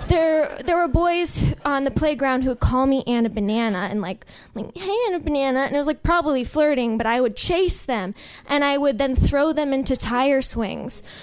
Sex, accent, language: female, American, English